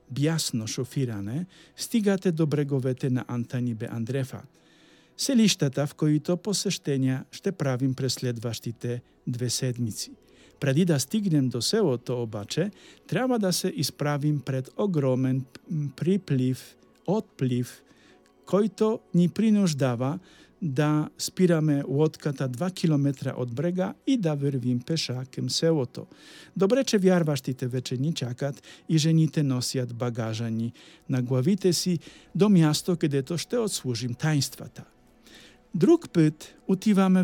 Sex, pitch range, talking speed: male, 125-175 Hz, 125 wpm